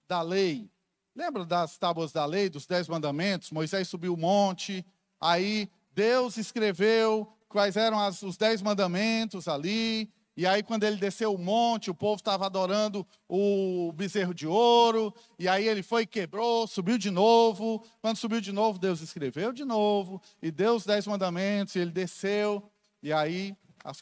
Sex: male